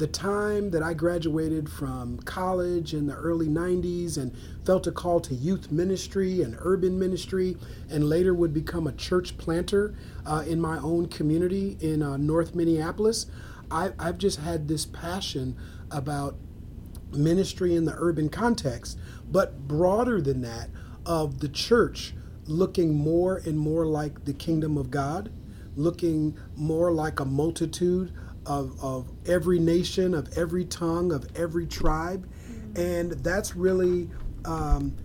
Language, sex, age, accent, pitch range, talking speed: English, male, 40-59, American, 145-180 Hz, 140 wpm